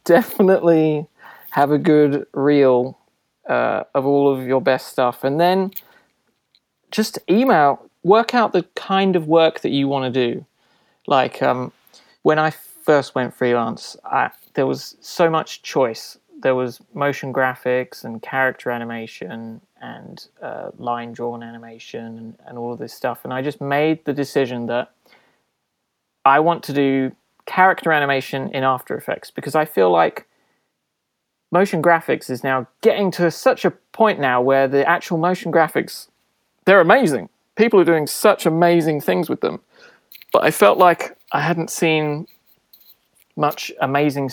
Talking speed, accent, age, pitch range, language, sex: 150 wpm, British, 30-49, 130-165 Hz, English, male